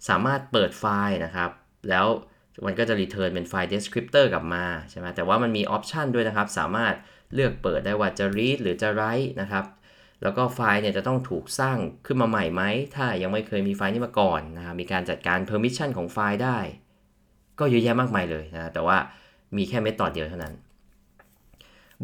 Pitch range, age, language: 95-115 Hz, 20-39, Thai